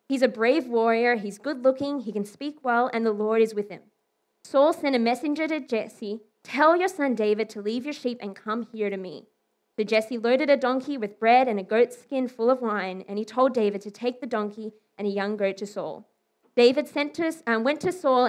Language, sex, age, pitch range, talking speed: English, female, 20-39, 215-275 Hz, 235 wpm